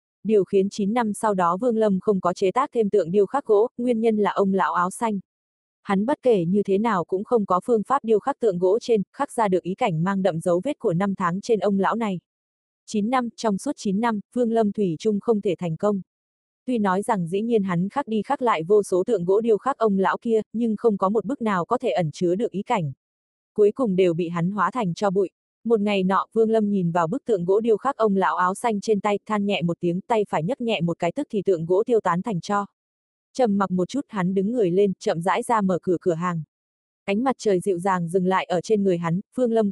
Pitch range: 180-225 Hz